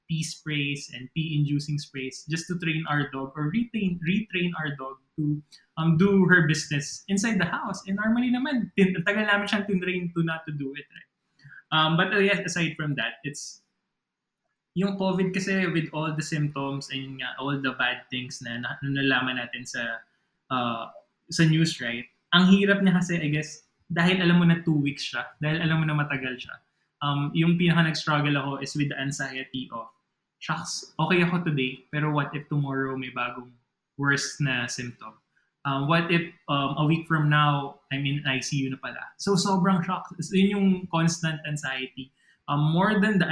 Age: 20-39